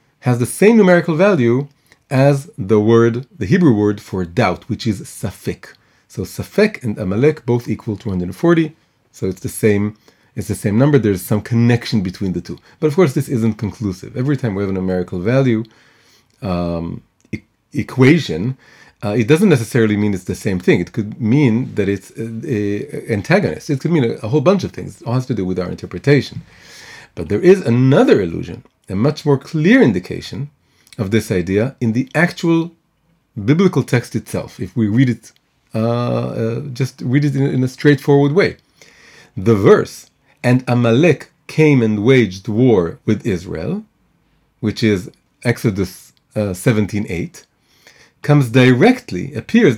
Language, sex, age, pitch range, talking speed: English, male, 40-59, 105-145 Hz, 165 wpm